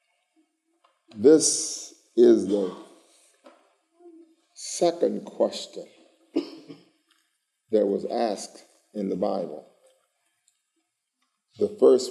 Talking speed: 65 wpm